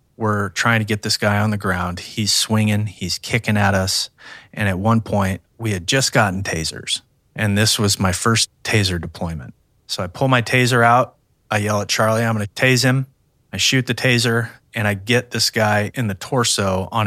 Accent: American